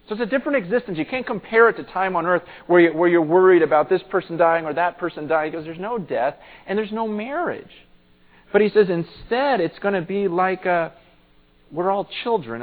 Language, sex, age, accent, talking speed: English, male, 40-59, American, 230 wpm